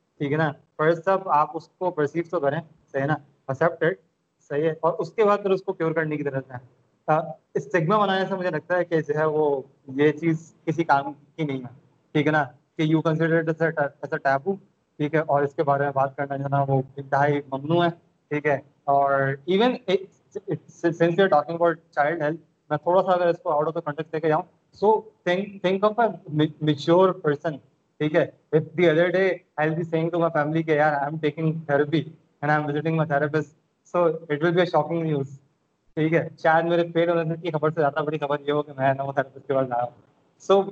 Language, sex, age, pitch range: Urdu, male, 20-39, 145-170 Hz